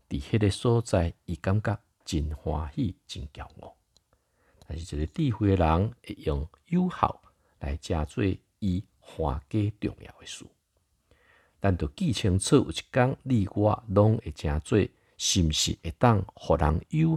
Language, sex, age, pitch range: Chinese, male, 50-69, 85-120 Hz